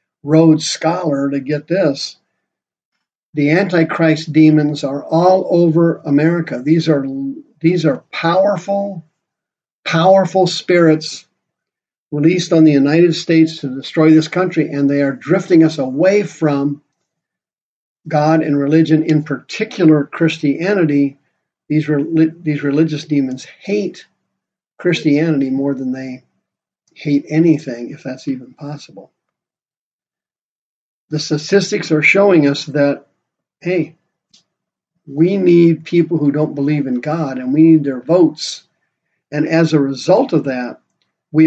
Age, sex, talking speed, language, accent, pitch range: 50-69, male, 120 wpm, English, American, 145-175 Hz